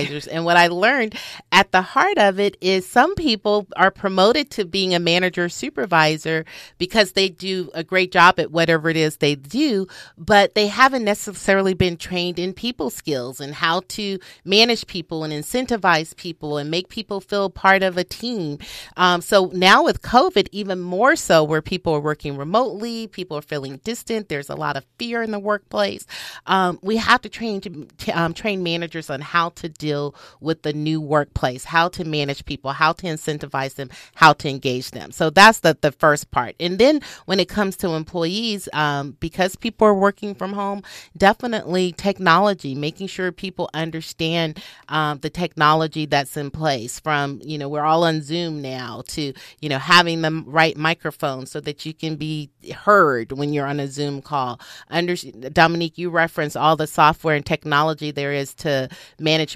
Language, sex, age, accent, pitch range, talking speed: English, female, 30-49, American, 150-195 Hz, 185 wpm